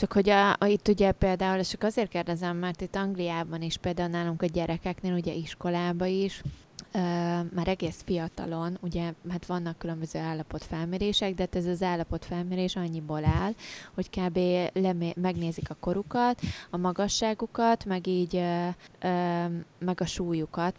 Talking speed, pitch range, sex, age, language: 150 wpm, 160-185 Hz, female, 20-39, Hungarian